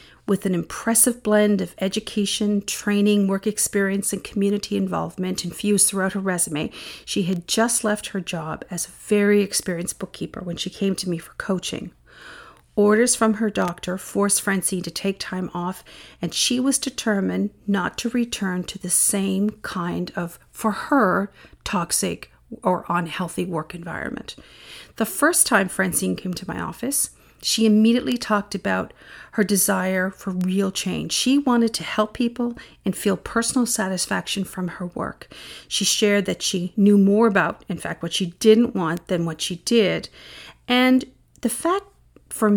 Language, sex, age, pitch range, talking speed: English, female, 50-69, 185-220 Hz, 160 wpm